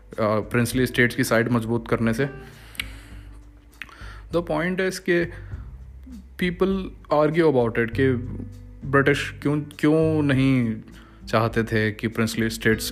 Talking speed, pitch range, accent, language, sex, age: 115 wpm, 115-140 Hz, native, Hindi, male, 20-39